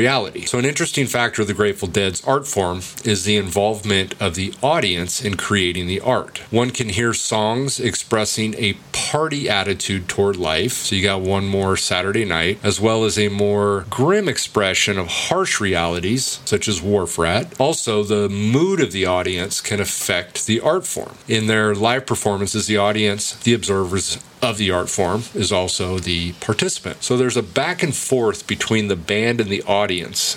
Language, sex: English, male